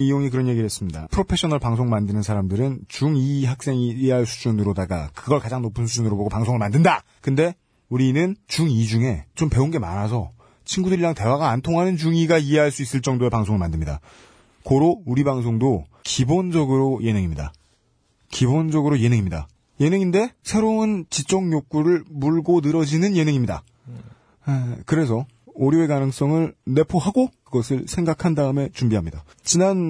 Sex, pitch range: male, 105-155 Hz